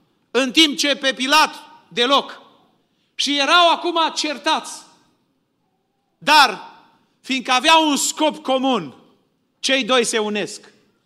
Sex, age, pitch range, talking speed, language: male, 40-59, 265-335 Hz, 110 wpm, Romanian